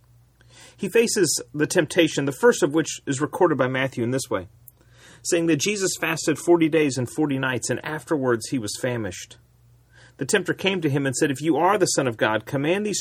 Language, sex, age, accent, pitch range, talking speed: English, male, 40-59, American, 120-175 Hz, 210 wpm